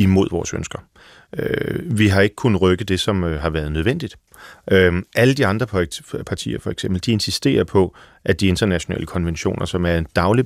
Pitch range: 85-115 Hz